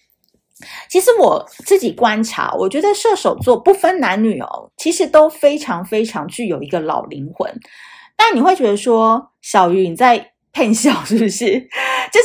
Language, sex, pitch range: Chinese, female, 190-290 Hz